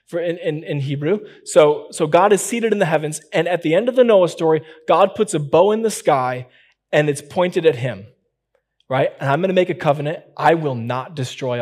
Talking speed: 225 wpm